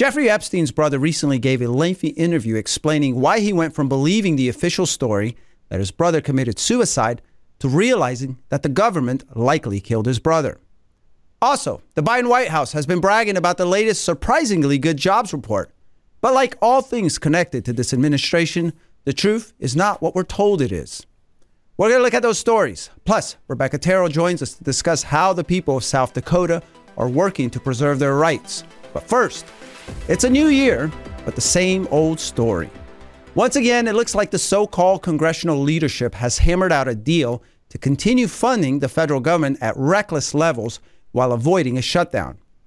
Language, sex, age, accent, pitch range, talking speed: English, male, 40-59, American, 130-185 Hz, 180 wpm